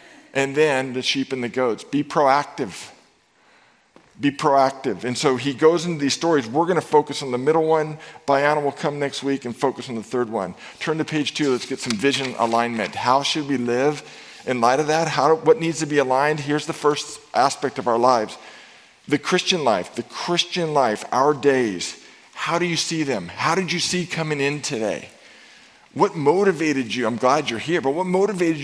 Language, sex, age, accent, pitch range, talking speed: English, male, 50-69, American, 130-160 Hz, 205 wpm